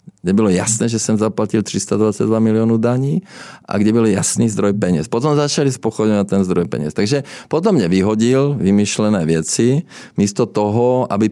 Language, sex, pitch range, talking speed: Czech, male, 100-125 Hz, 160 wpm